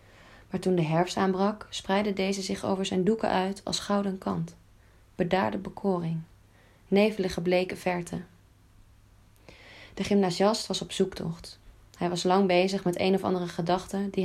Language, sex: Dutch, female